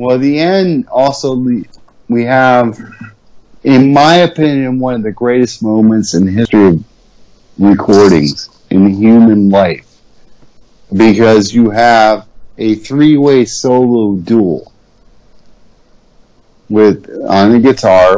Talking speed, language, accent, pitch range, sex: 105 wpm, English, American, 100-120 Hz, male